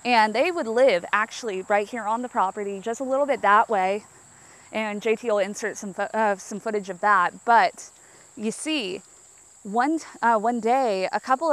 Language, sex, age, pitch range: English, female, 20-39, 200-245 Hz